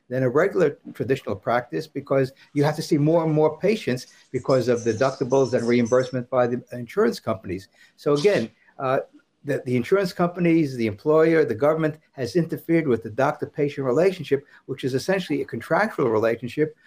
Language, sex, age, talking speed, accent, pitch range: English, male, 60-79, 165 wpm, American, 125-160 Hz